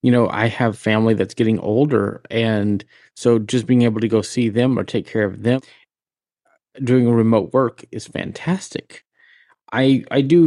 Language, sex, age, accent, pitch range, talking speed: English, male, 30-49, American, 110-130 Hz, 170 wpm